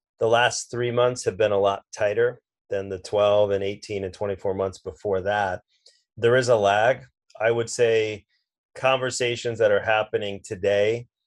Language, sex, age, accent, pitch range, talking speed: English, male, 30-49, American, 100-145 Hz, 165 wpm